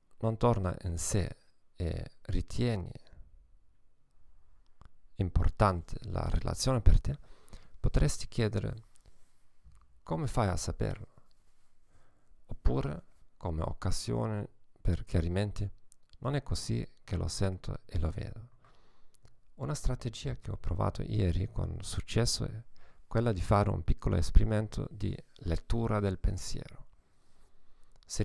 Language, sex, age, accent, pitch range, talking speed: Italian, male, 40-59, native, 90-115 Hz, 110 wpm